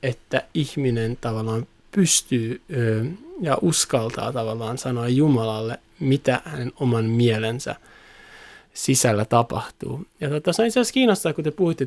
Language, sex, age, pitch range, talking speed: Finnish, male, 20-39, 120-155 Hz, 120 wpm